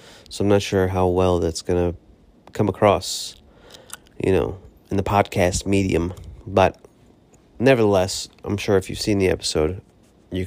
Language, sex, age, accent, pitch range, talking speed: English, male, 30-49, American, 95-115 Hz, 155 wpm